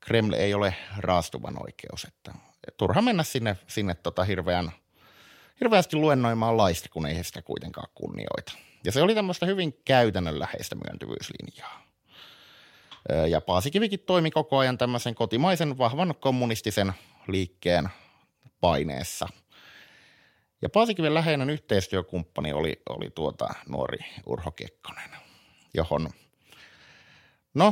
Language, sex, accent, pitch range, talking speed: Finnish, male, native, 100-155 Hz, 110 wpm